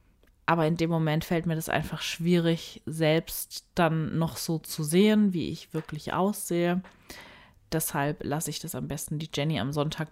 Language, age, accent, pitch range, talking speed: German, 20-39, German, 155-185 Hz, 170 wpm